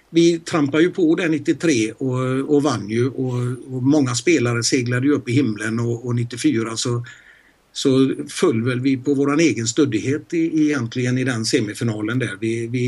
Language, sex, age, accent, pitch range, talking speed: Swedish, male, 60-79, native, 115-145 Hz, 175 wpm